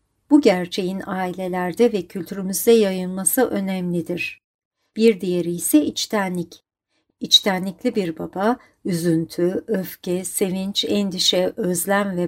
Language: Turkish